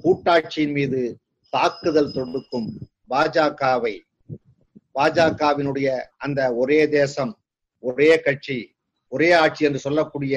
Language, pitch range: Tamil, 135-170 Hz